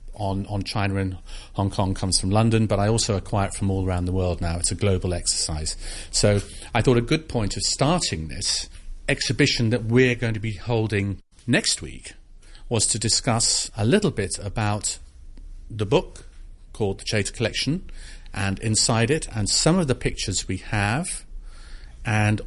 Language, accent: English, British